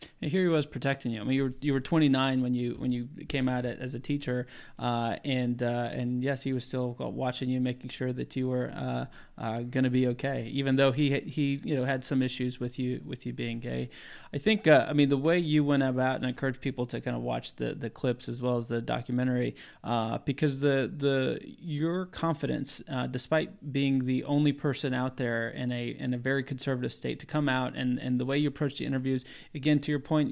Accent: American